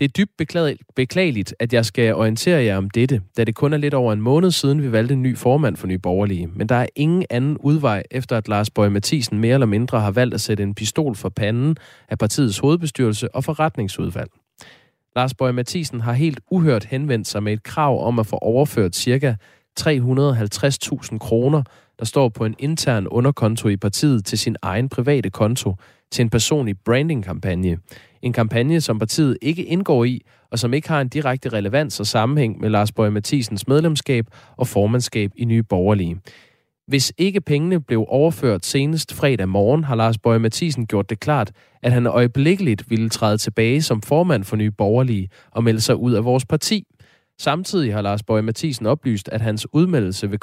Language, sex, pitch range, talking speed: Danish, male, 110-140 Hz, 185 wpm